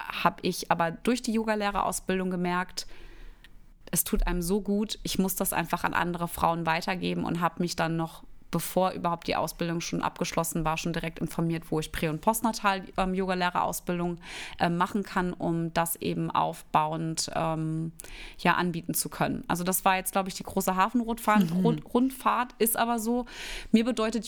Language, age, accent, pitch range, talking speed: German, 20-39, German, 180-205 Hz, 170 wpm